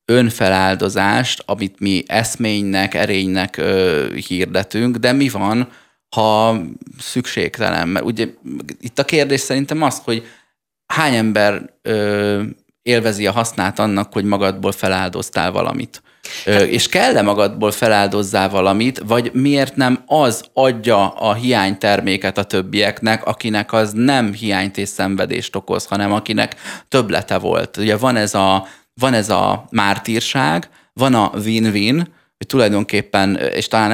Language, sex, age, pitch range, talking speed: Hungarian, male, 30-49, 95-120 Hz, 125 wpm